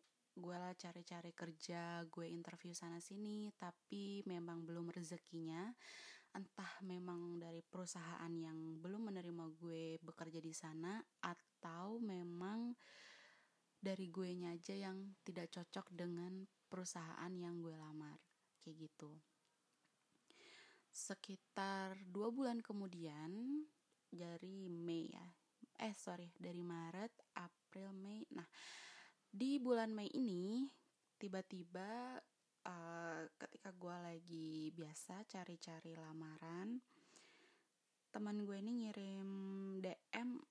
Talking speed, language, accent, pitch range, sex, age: 105 wpm, Indonesian, native, 170-205 Hz, female, 20-39